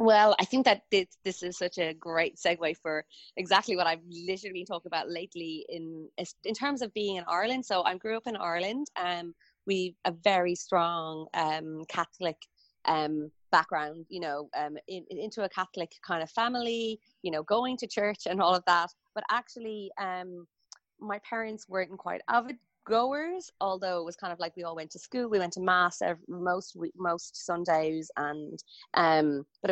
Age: 20-39